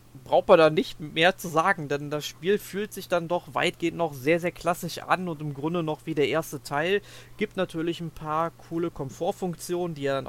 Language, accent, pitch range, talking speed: German, German, 130-165 Hz, 215 wpm